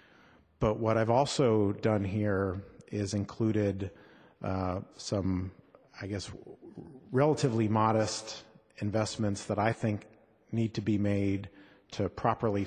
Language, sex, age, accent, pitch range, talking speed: English, male, 40-59, American, 100-110 Hz, 120 wpm